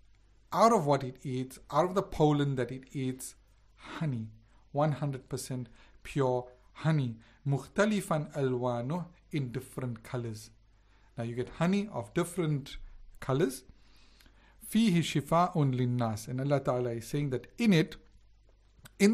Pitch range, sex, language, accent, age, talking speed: 125-155 Hz, male, English, Indian, 50-69, 135 wpm